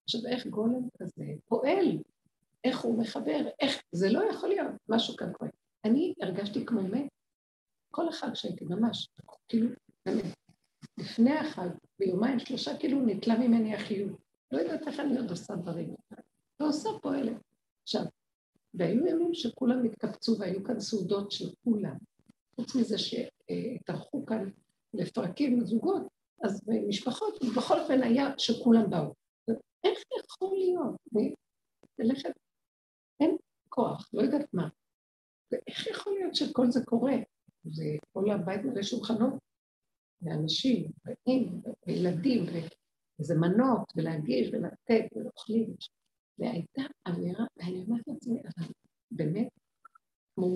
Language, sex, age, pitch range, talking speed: Hebrew, female, 50-69, 195-260 Hz, 120 wpm